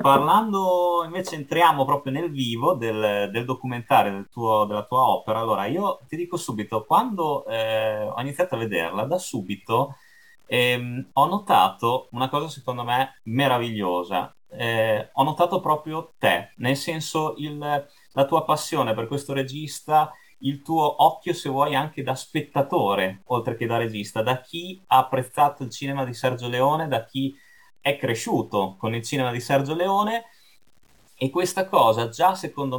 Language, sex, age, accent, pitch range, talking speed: Italian, male, 30-49, native, 125-165 Hz, 150 wpm